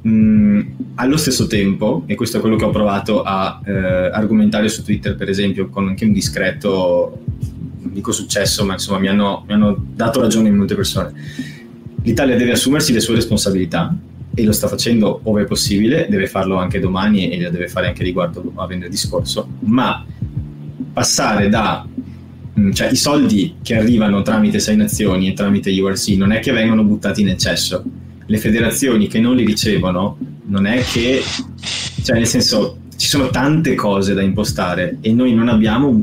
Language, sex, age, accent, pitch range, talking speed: Italian, male, 20-39, native, 100-115 Hz, 175 wpm